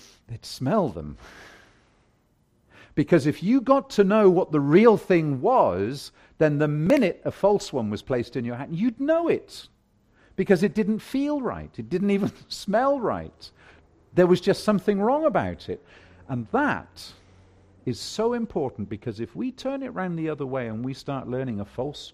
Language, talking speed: English, 175 wpm